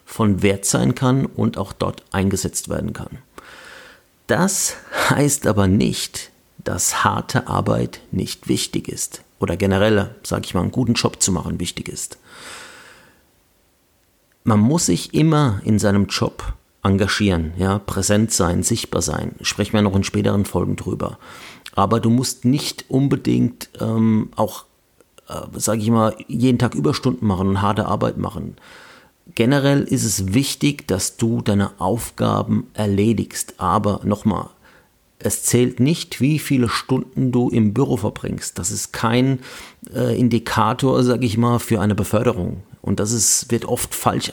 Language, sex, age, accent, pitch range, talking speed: German, male, 40-59, German, 100-125 Hz, 145 wpm